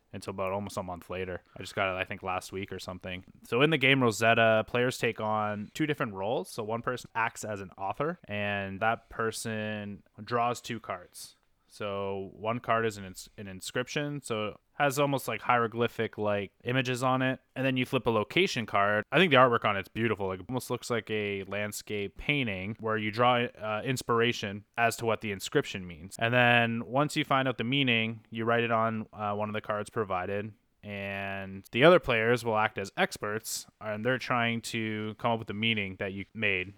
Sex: male